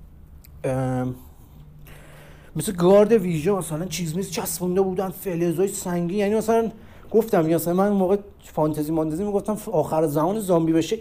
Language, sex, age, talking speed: Persian, male, 40-59, 140 wpm